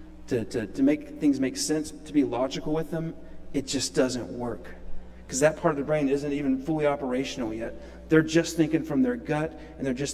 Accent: American